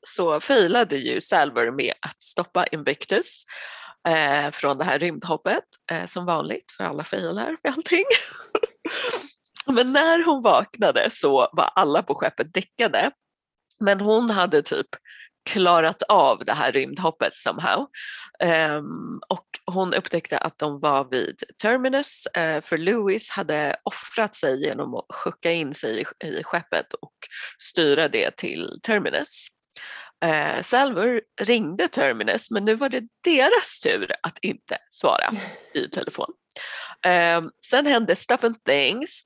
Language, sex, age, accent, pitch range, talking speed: Swedish, female, 30-49, native, 185-275 Hz, 125 wpm